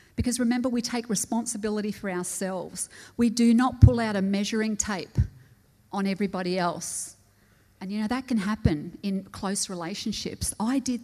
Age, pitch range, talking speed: 40-59, 170-220 Hz, 160 wpm